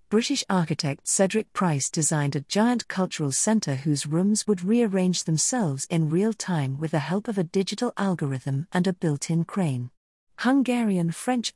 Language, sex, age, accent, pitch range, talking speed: English, female, 50-69, British, 155-210 Hz, 155 wpm